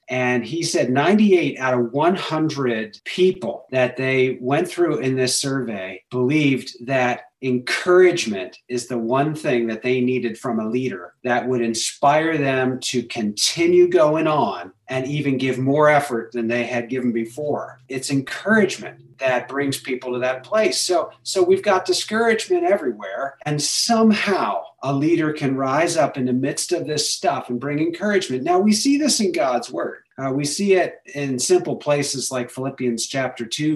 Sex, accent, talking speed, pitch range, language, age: male, American, 165 wpm, 125-165 Hz, English, 40-59